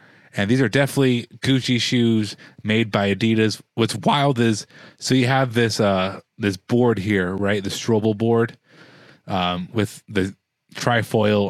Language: English